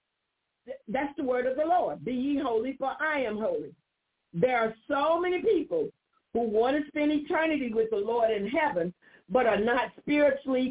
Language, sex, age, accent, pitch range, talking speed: English, female, 50-69, American, 215-300 Hz, 180 wpm